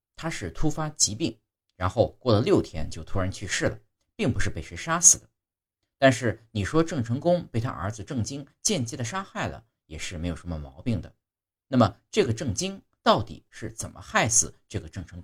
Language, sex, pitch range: Chinese, male, 90-125 Hz